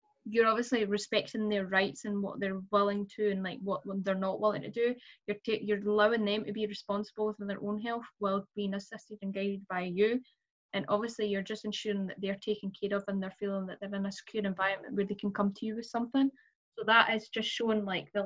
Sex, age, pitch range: female, 10-29, 200-230 Hz